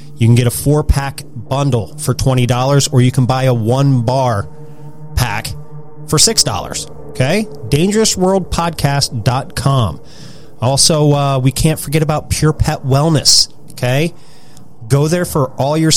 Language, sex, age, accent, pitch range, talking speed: English, male, 30-49, American, 120-150 Hz, 130 wpm